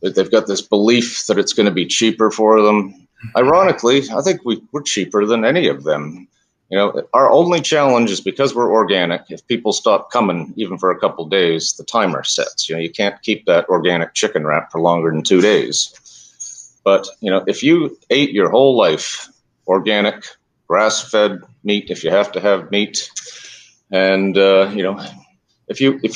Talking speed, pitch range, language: 190 wpm, 100-120 Hz, English